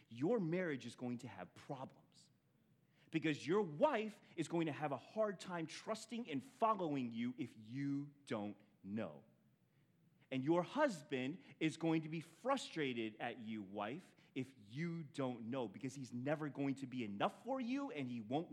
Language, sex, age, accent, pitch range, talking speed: English, male, 30-49, American, 130-190 Hz, 170 wpm